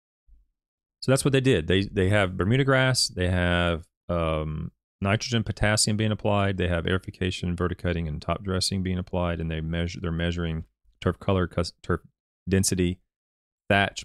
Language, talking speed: English, 155 wpm